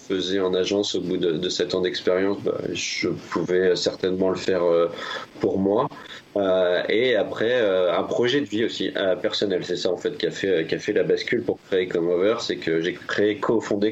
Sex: male